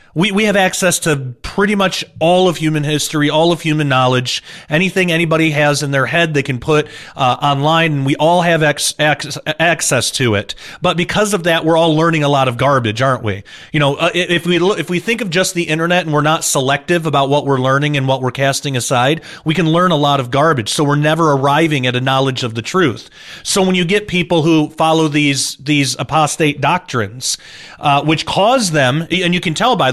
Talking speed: 225 wpm